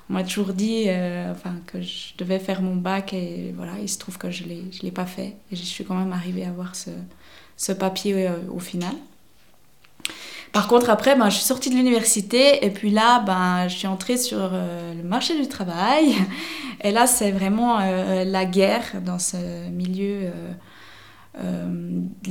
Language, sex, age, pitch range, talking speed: French, female, 20-39, 185-215 Hz, 195 wpm